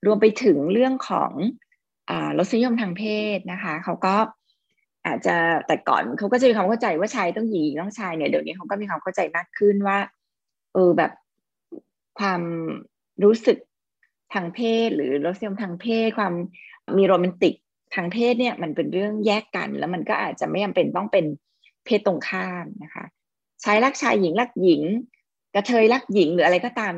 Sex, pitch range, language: female, 175-225 Hz, Thai